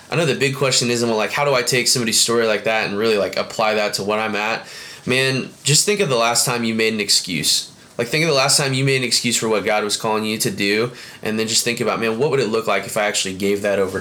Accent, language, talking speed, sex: American, English, 305 wpm, male